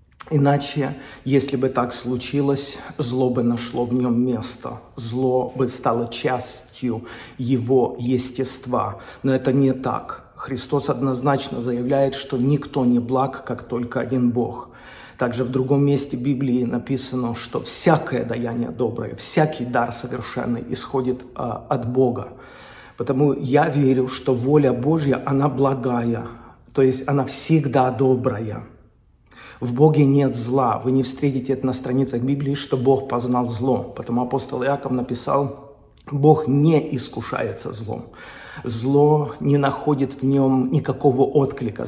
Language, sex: Russian, male